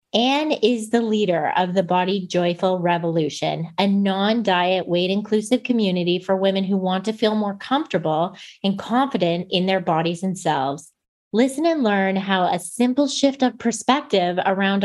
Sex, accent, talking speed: female, American, 155 wpm